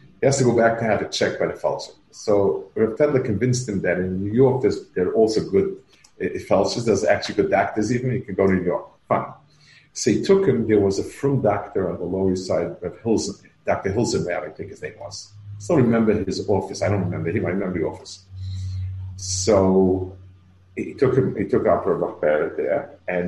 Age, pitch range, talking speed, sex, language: 50-69, 95-140 Hz, 215 wpm, male, English